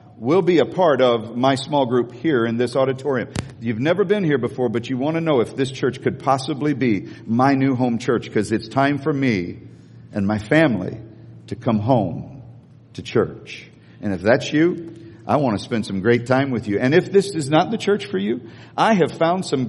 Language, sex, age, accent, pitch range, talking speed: English, male, 50-69, American, 115-145 Hz, 215 wpm